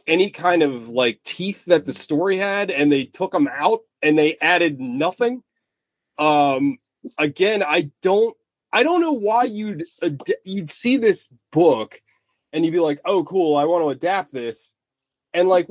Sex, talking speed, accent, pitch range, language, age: male, 170 wpm, American, 150-250 Hz, English, 30-49